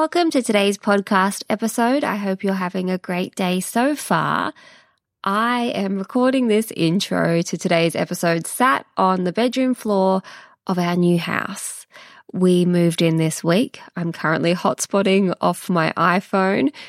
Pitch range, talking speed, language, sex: 170-210 Hz, 150 wpm, English, female